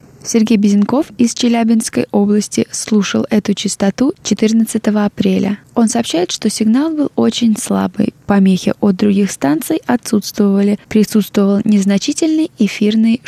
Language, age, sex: Russian, 20-39, female